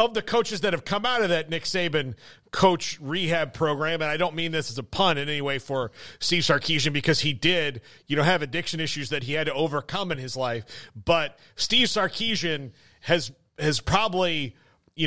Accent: American